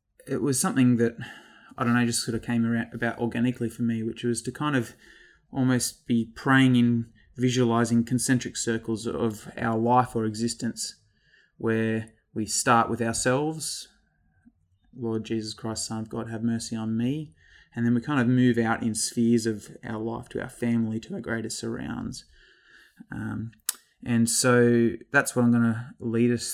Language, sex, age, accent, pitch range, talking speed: English, male, 20-39, Australian, 115-125 Hz, 175 wpm